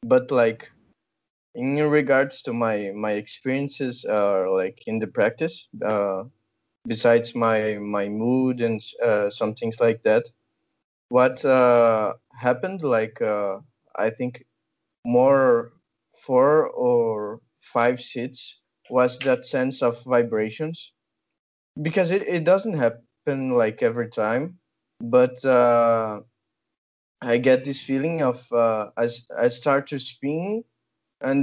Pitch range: 120-155 Hz